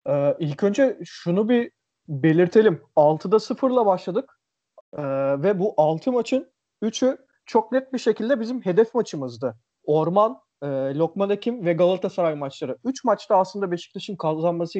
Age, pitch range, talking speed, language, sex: 40-59, 160-205 Hz, 140 wpm, Turkish, male